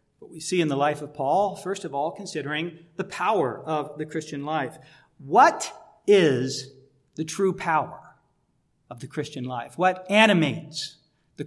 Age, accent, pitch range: 50-69, American, 170-240 Hz